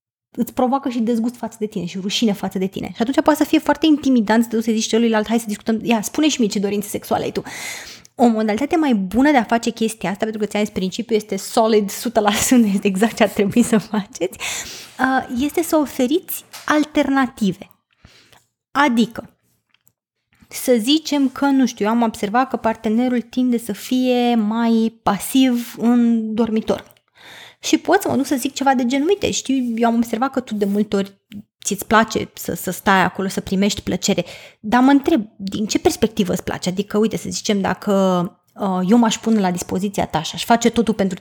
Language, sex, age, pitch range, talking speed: Romanian, female, 20-39, 205-265 Hz, 200 wpm